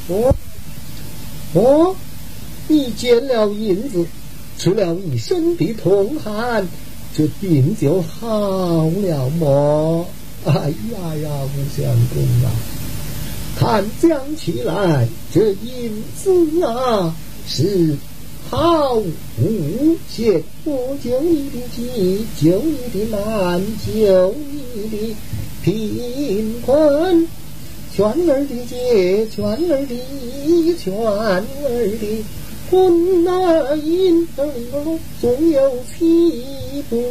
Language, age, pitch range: Chinese, 50-69, 195-300 Hz